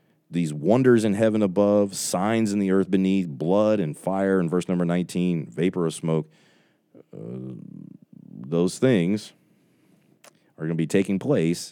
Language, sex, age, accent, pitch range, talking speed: English, male, 30-49, American, 80-105 Hz, 150 wpm